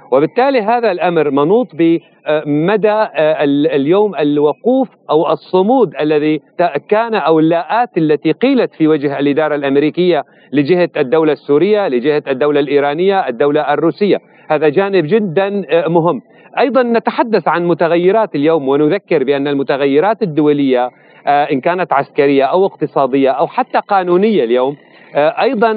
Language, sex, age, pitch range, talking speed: Arabic, male, 40-59, 145-190 Hz, 115 wpm